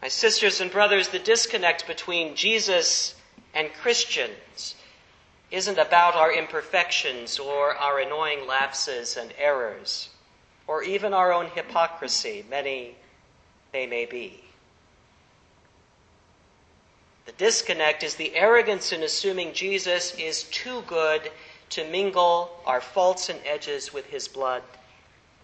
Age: 50-69